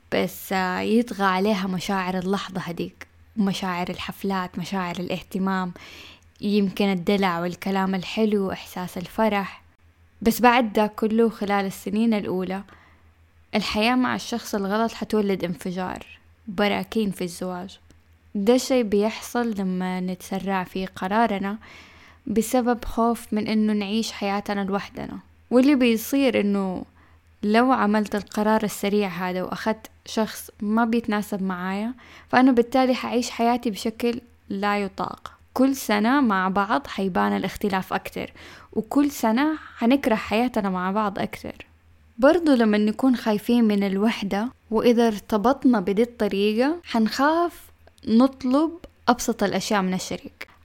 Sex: female